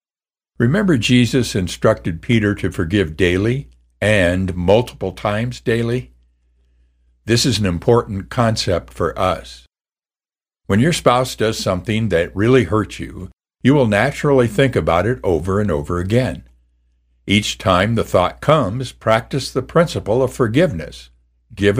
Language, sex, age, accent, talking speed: English, male, 60-79, American, 130 wpm